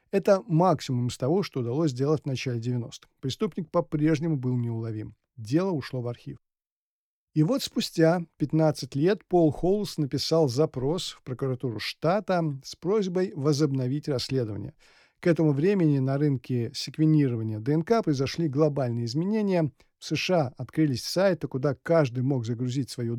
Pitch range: 130-170 Hz